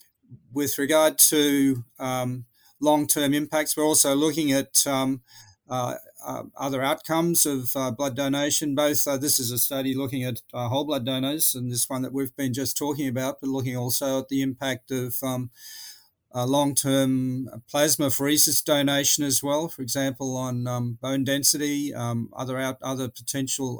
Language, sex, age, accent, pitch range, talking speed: English, male, 40-59, Australian, 120-140 Hz, 165 wpm